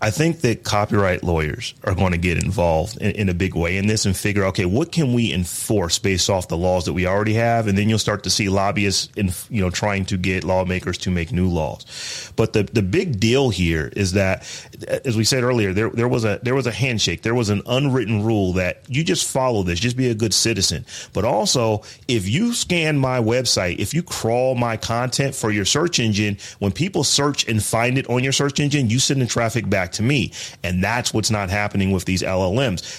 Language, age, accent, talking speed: English, 30-49, American, 230 wpm